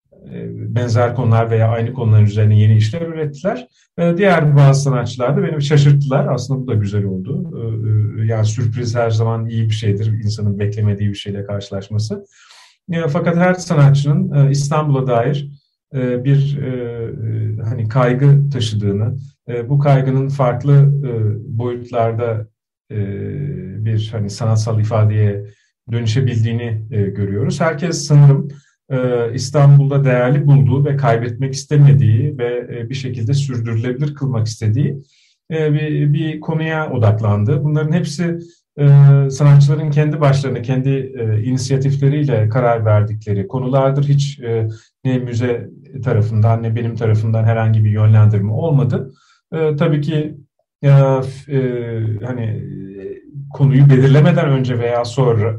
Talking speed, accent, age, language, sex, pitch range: 105 wpm, native, 40-59, Turkish, male, 115-145 Hz